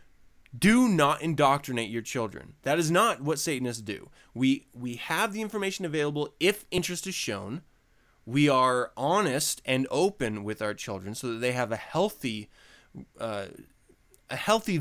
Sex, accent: male, American